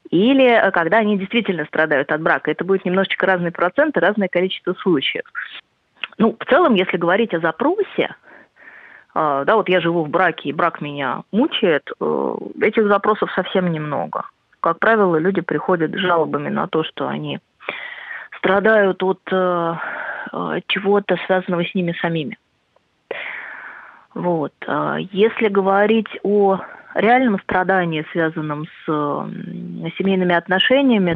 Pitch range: 160-195 Hz